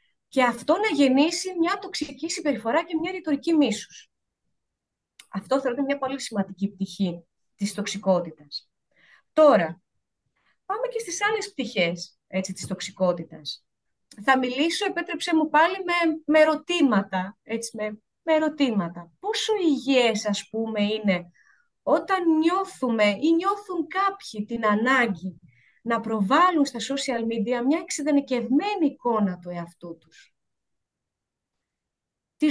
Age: 30-49